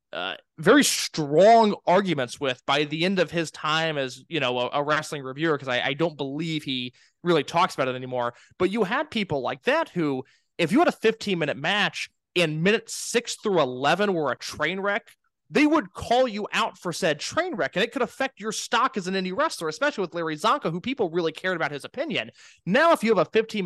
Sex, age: male, 20-39